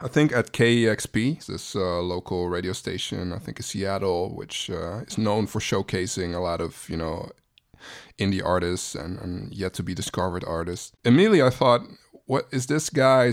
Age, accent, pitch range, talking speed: 20-39, American, 95-120 Hz, 180 wpm